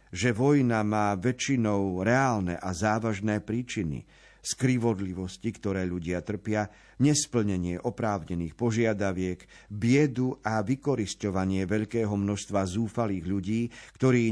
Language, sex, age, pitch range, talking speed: Slovak, male, 50-69, 105-135 Hz, 95 wpm